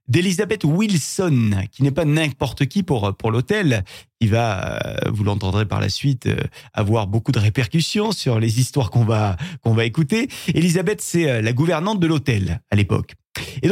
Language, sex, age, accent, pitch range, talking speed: French, male, 30-49, French, 105-160 Hz, 165 wpm